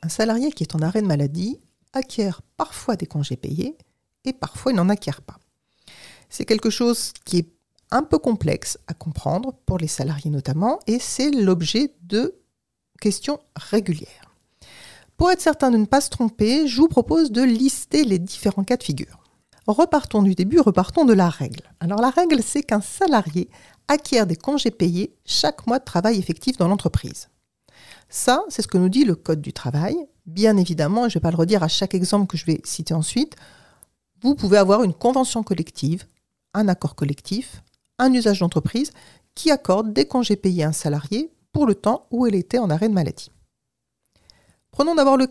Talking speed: 185 wpm